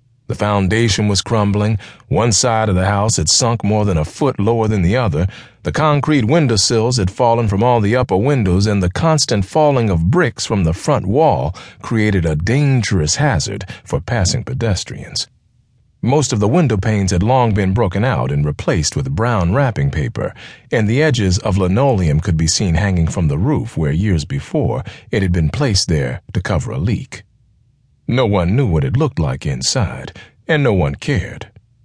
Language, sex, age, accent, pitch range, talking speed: English, male, 40-59, American, 95-120 Hz, 185 wpm